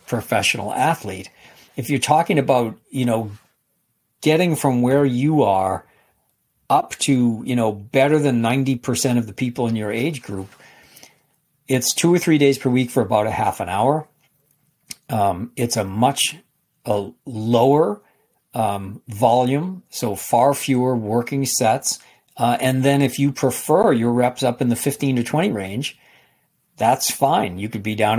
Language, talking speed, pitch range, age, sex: English, 160 wpm, 110-135 Hz, 50-69, male